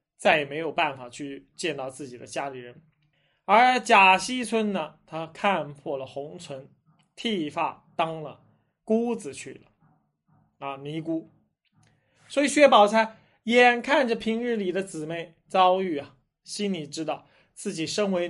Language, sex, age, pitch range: Chinese, male, 20-39, 150-200 Hz